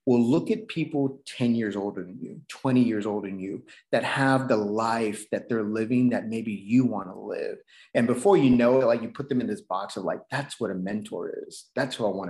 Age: 30-49